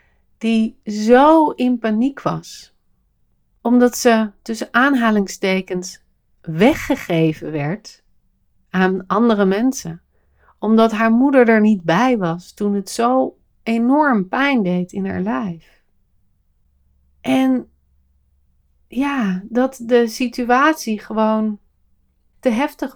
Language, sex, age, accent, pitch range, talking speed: Dutch, female, 40-59, Dutch, 175-245 Hz, 100 wpm